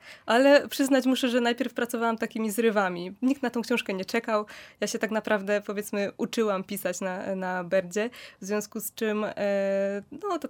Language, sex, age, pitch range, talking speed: Polish, female, 20-39, 200-230 Hz, 165 wpm